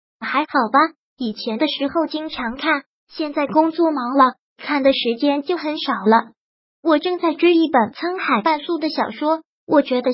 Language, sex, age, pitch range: Chinese, male, 20-39, 270-330 Hz